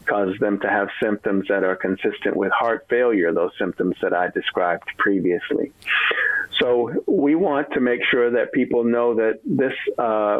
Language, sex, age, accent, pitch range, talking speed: English, male, 50-69, American, 95-115 Hz, 165 wpm